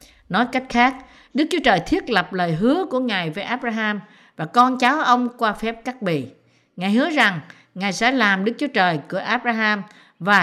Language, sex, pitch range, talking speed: Vietnamese, female, 170-245 Hz, 195 wpm